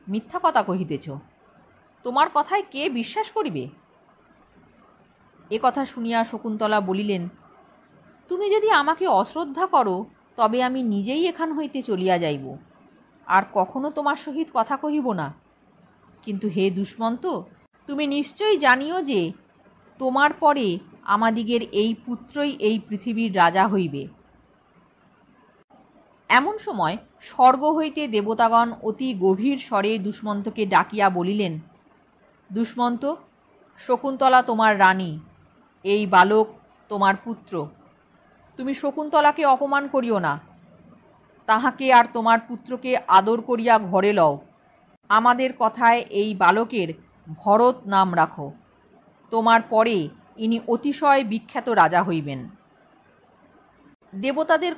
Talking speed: 90 wpm